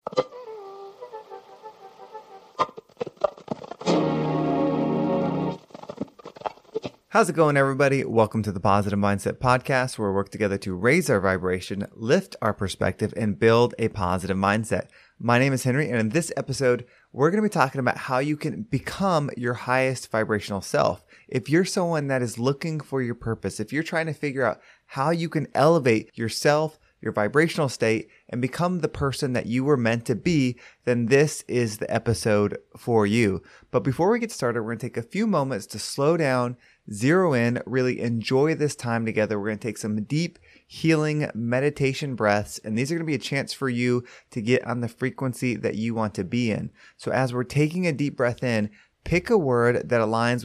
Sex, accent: male, American